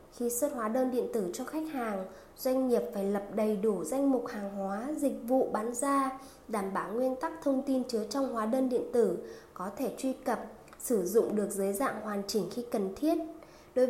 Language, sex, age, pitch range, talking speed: Vietnamese, female, 20-39, 210-265 Hz, 215 wpm